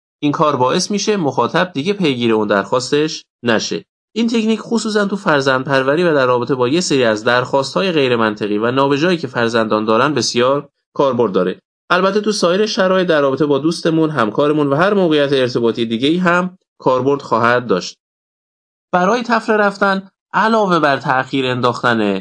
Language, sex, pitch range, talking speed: Persian, male, 125-185 Hz, 160 wpm